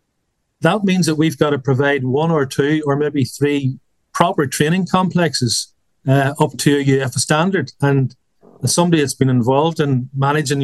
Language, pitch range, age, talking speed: English, 130-155 Hz, 40-59, 165 wpm